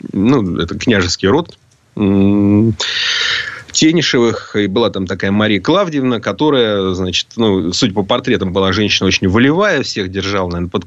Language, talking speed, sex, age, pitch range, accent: Russian, 125 wpm, male, 30-49, 95-130 Hz, native